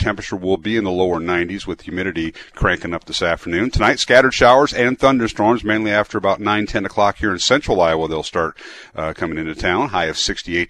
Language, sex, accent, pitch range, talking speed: English, male, American, 90-115 Hz, 200 wpm